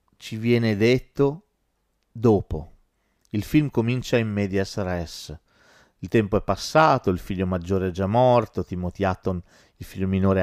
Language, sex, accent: Italian, male, native